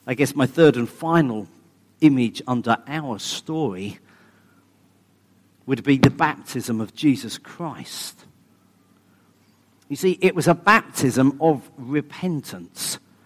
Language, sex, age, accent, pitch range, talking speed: English, male, 40-59, British, 110-155 Hz, 115 wpm